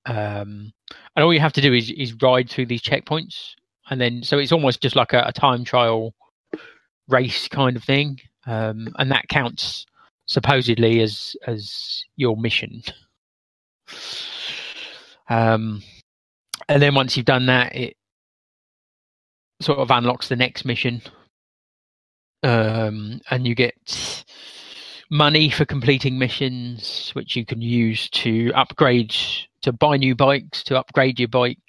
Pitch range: 115-145 Hz